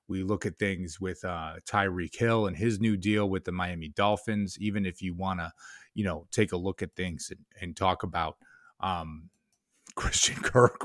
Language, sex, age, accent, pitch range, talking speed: English, male, 30-49, American, 95-110 Hz, 195 wpm